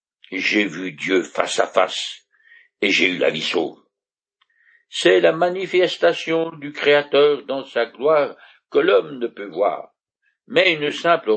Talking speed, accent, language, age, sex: 150 wpm, French, French, 60-79, male